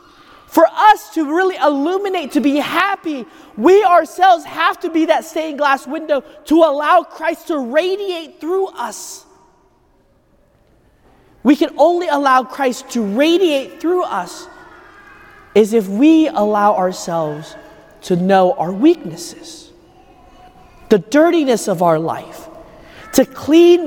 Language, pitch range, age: English, 245-345 Hz, 30-49